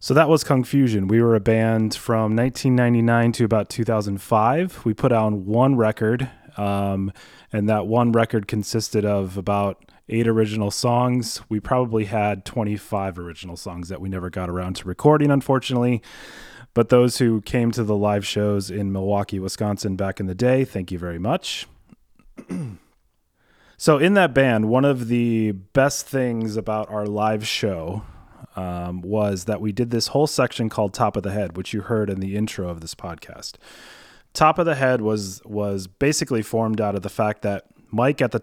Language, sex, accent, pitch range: English, male, American, 100-120 Hz